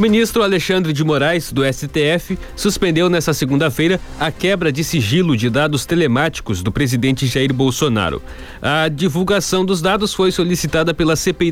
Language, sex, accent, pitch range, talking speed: Portuguese, male, Brazilian, 135-170 Hz, 150 wpm